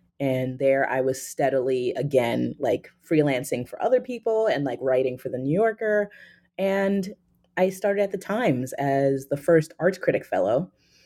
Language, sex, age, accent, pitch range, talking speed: English, female, 20-39, American, 145-195 Hz, 165 wpm